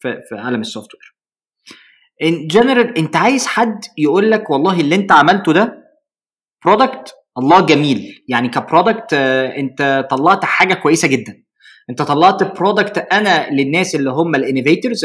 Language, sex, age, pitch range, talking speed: Arabic, male, 20-39, 150-235 Hz, 135 wpm